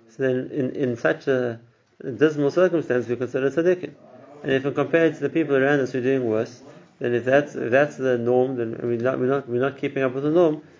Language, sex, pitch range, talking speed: English, male, 120-145 Hz, 245 wpm